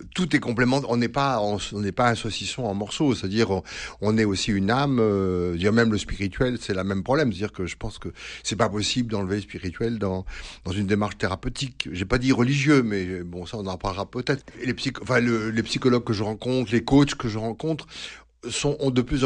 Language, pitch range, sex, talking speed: French, 95-125 Hz, male, 235 wpm